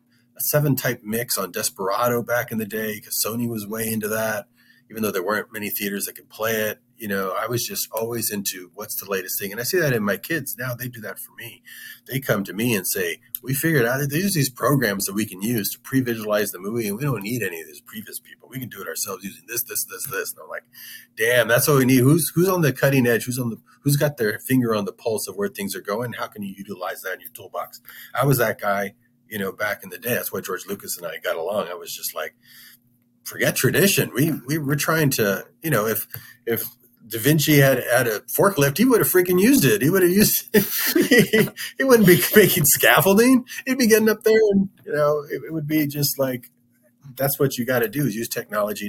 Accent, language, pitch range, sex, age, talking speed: American, English, 110-175 Hz, male, 30-49, 250 wpm